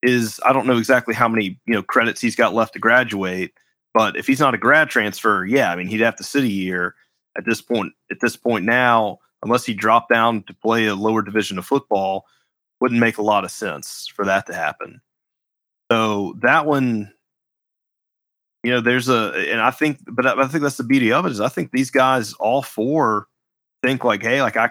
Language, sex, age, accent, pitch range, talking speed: English, male, 30-49, American, 100-120 Hz, 220 wpm